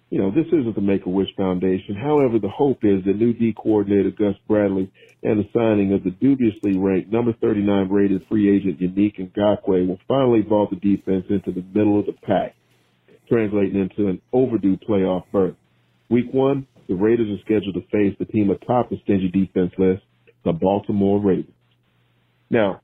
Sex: male